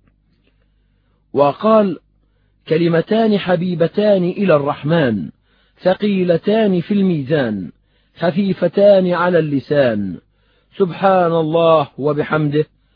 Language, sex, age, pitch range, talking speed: Arabic, male, 50-69, 155-195 Hz, 65 wpm